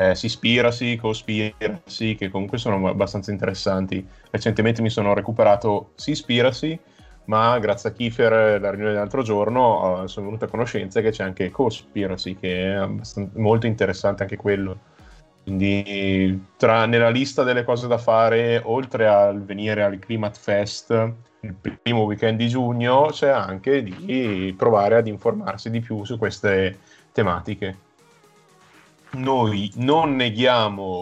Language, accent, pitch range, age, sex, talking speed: Italian, native, 100-115 Hz, 30-49, male, 135 wpm